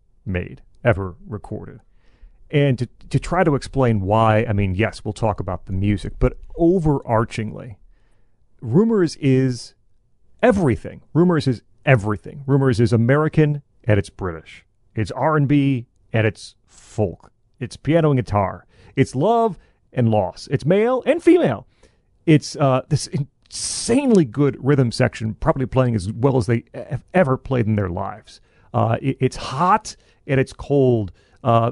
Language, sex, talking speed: English, male, 145 wpm